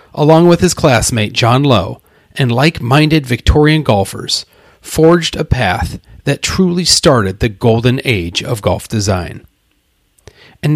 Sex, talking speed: male, 130 wpm